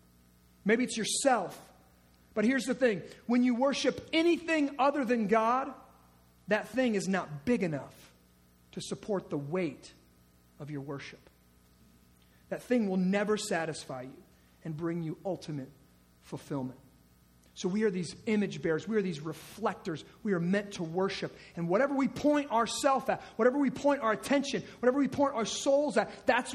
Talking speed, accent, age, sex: 160 wpm, American, 40-59, male